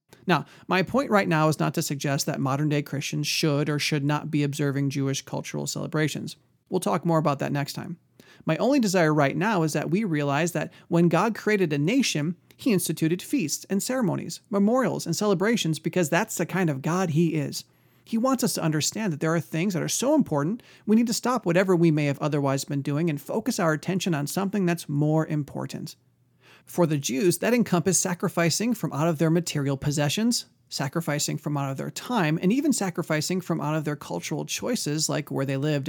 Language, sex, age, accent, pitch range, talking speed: English, male, 40-59, American, 145-185 Hz, 205 wpm